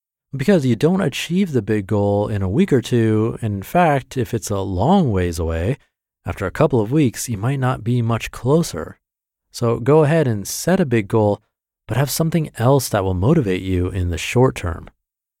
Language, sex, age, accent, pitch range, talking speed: English, male, 30-49, American, 100-135 Hz, 200 wpm